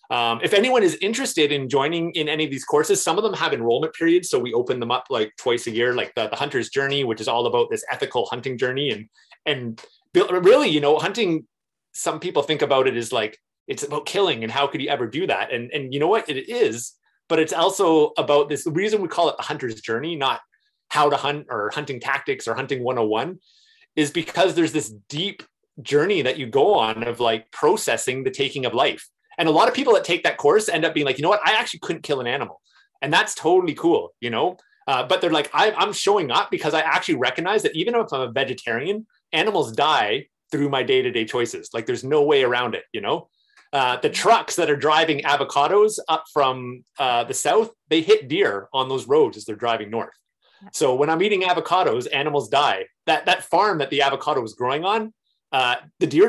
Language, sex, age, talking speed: English, male, 30-49, 225 wpm